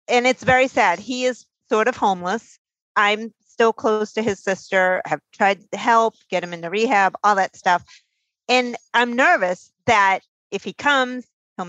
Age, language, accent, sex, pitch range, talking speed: 40-59, English, American, female, 195-245 Hz, 175 wpm